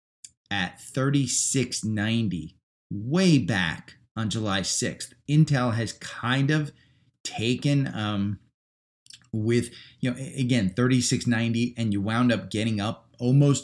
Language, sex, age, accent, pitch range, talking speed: English, male, 30-49, American, 100-125 Hz, 110 wpm